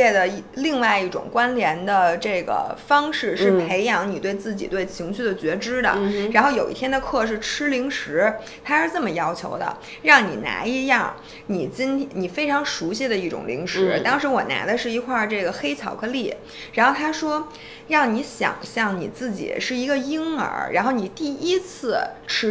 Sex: female